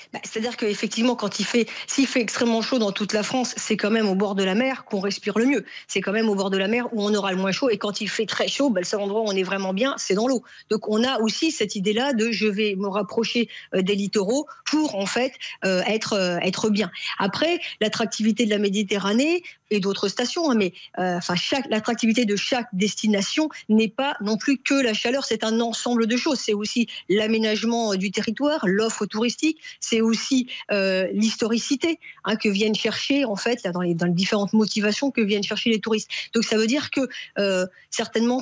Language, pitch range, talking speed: French, 205-245 Hz, 225 wpm